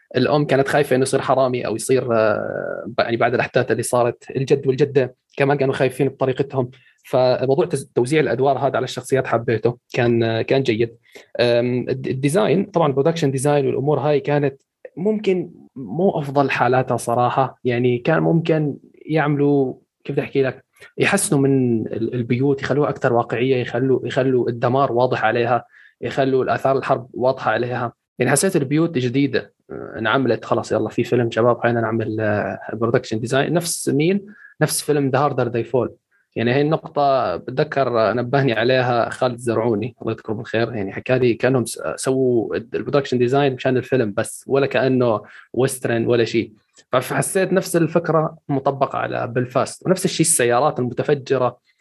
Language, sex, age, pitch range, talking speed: Arabic, male, 20-39, 120-145 Hz, 140 wpm